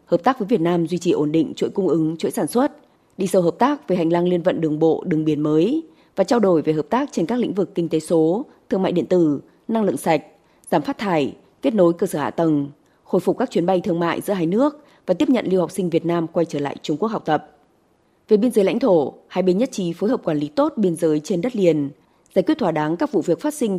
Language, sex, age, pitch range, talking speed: Vietnamese, female, 20-39, 160-230 Hz, 280 wpm